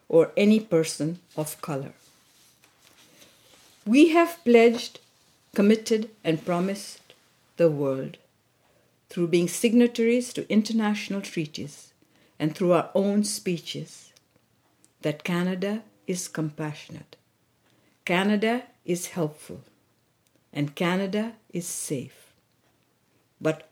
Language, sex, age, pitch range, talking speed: English, female, 60-79, 155-210 Hz, 90 wpm